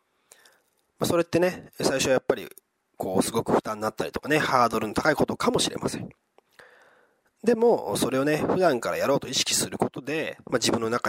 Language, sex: Japanese, male